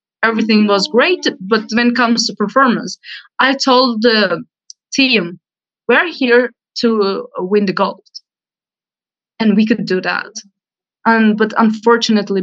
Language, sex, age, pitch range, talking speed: English, female, 20-39, 190-225 Hz, 130 wpm